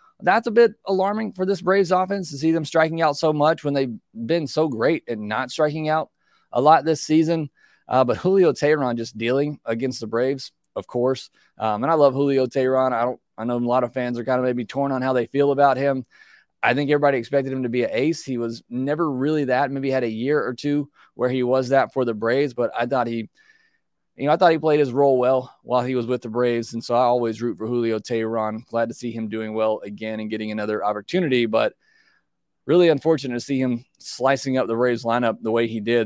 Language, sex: English, male